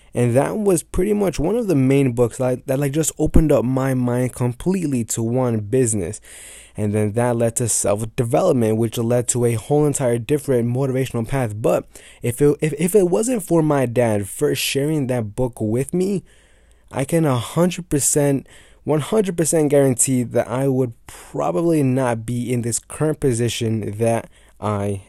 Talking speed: 175 wpm